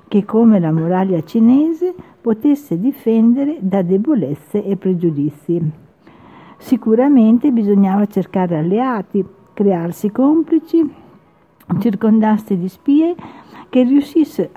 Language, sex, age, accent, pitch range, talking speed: Italian, female, 50-69, native, 195-260 Hz, 90 wpm